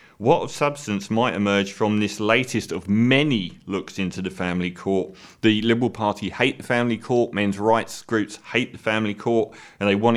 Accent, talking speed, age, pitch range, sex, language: British, 190 wpm, 30-49, 100-125 Hz, male, English